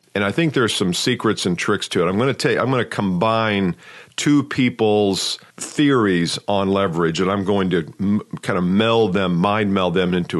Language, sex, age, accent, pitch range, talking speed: English, male, 50-69, American, 90-120 Hz, 210 wpm